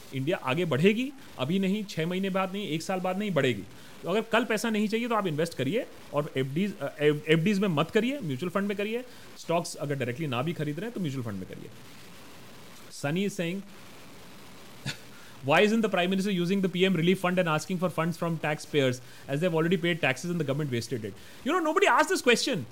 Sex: male